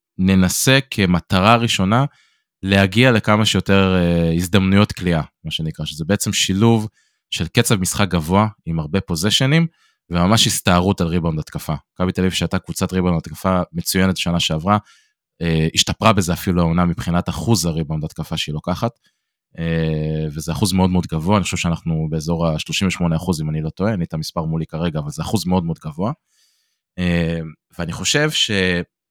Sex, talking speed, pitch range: male, 150 wpm, 85-105 Hz